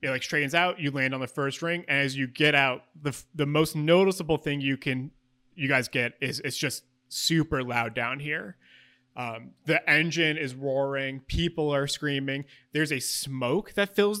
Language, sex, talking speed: English, male, 190 wpm